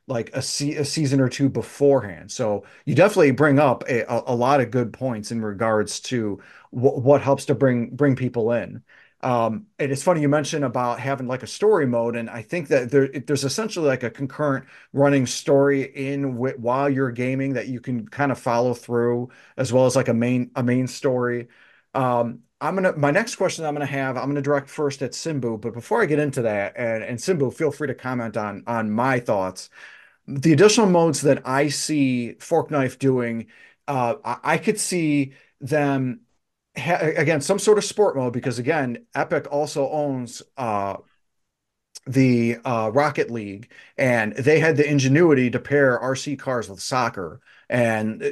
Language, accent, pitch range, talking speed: English, American, 120-145 Hz, 190 wpm